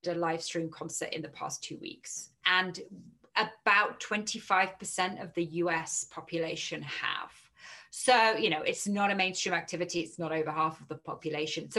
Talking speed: 170 wpm